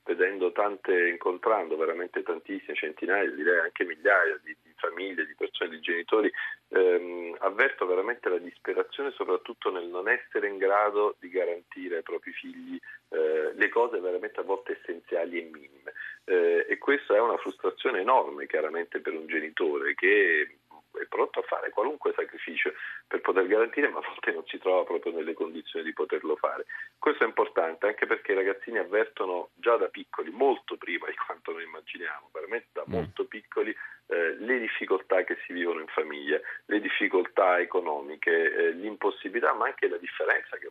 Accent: native